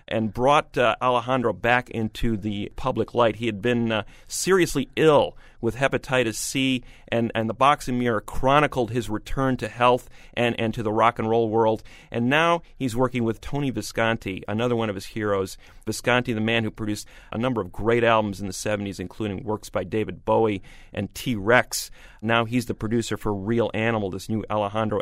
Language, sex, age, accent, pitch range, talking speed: English, male, 40-59, American, 110-135 Hz, 185 wpm